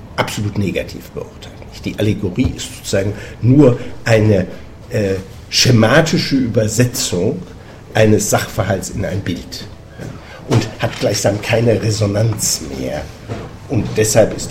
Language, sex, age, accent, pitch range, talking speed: German, male, 60-79, German, 100-125 Hz, 110 wpm